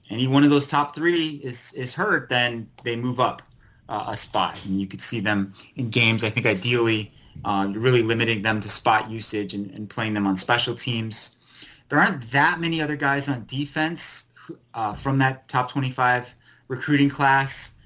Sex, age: male, 30-49